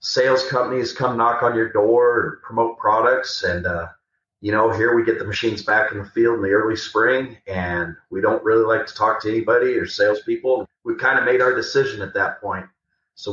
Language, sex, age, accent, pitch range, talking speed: English, male, 30-49, American, 105-165 Hz, 215 wpm